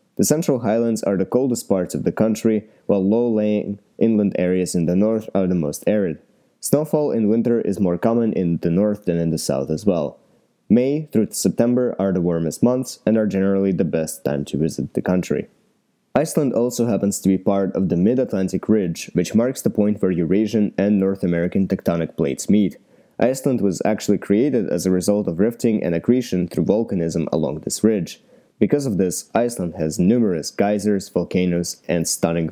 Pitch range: 90-115 Hz